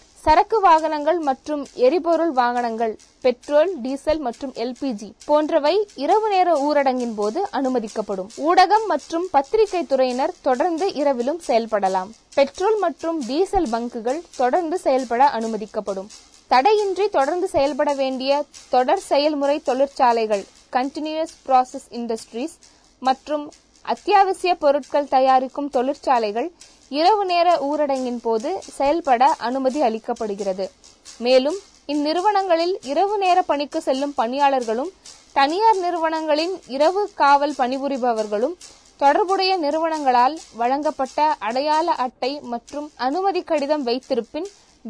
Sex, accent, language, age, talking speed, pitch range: female, native, Tamil, 20-39, 95 wpm, 255-340 Hz